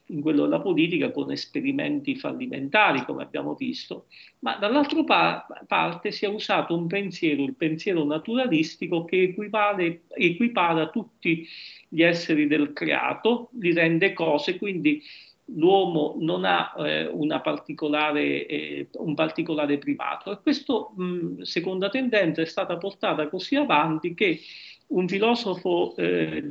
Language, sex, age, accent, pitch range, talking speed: Italian, male, 40-59, native, 155-240 Hz, 120 wpm